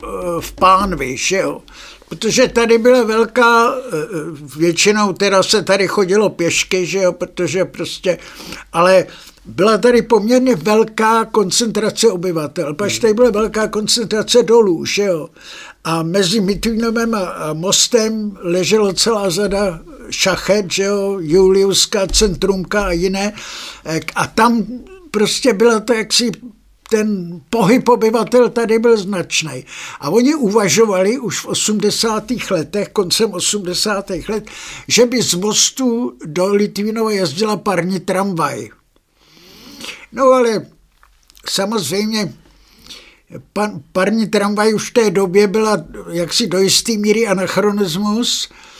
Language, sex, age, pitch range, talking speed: Czech, male, 60-79, 185-225 Hz, 115 wpm